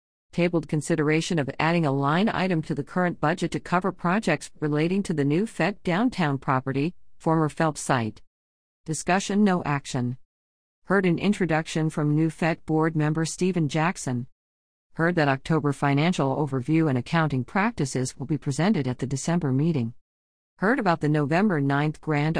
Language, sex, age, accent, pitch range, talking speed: English, female, 50-69, American, 140-180 Hz, 155 wpm